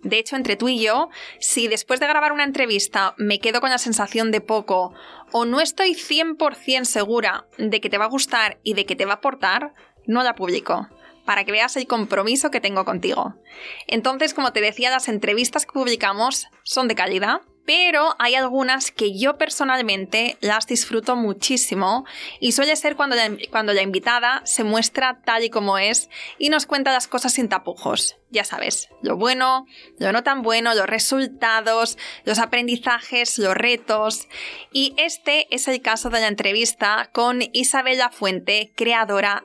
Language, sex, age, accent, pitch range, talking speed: Spanish, female, 20-39, Spanish, 210-260 Hz, 175 wpm